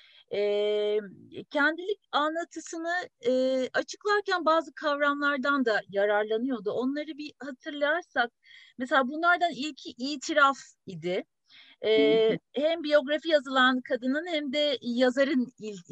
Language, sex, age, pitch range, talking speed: Turkish, female, 40-59, 225-315 Hz, 100 wpm